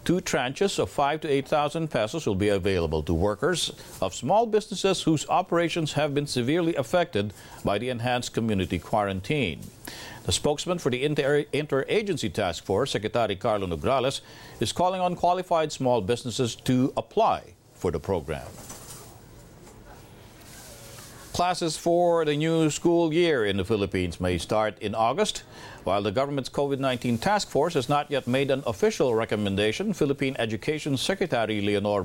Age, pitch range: 50-69, 110-160 Hz